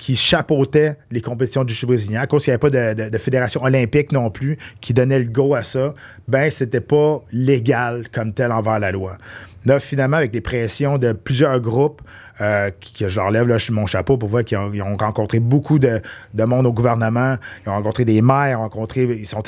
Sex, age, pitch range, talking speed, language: male, 30-49, 115-150 Hz, 225 wpm, French